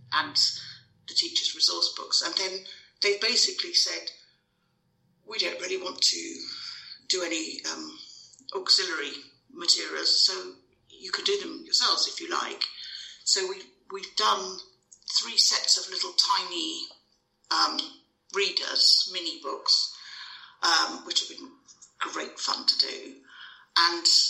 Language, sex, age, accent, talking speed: English, female, 50-69, British, 125 wpm